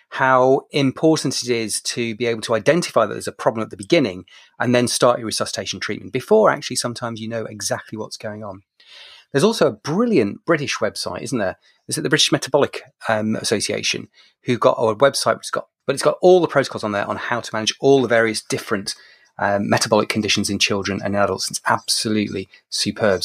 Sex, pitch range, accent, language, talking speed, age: male, 110-155 Hz, British, English, 200 wpm, 30-49